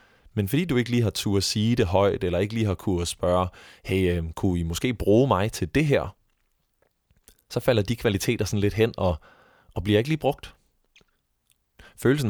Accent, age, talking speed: native, 20-39, 195 wpm